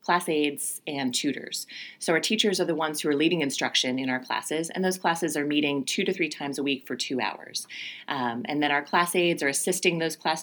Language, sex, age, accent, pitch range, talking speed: English, female, 30-49, American, 135-180 Hz, 235 wpm